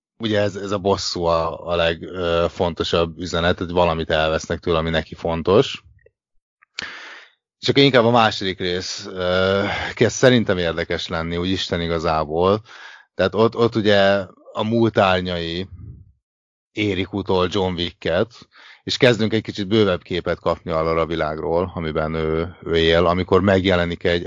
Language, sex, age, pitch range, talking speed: Hungarian, male, 30-49, 85-110 Hz, 145 wpm